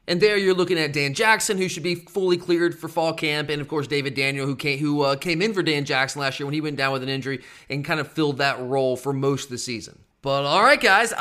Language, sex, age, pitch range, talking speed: English, male, 30-49, 145-205 Hz, 280 wpm